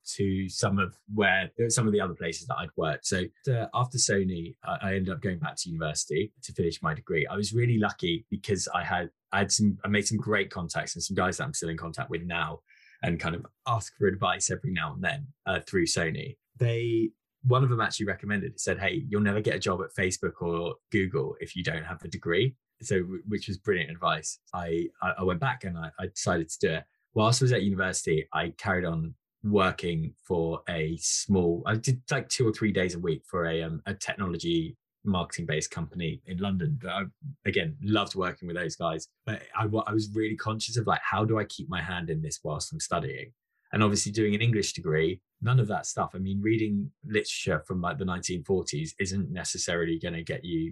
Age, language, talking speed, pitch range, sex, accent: 20-39, English, 220 wpm, 85-115 Hz, male, British